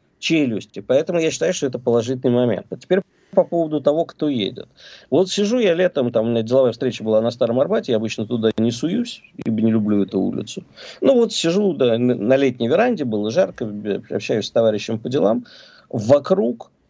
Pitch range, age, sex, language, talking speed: 115-170 Hz, 50-69, male, Russian, 180 wpm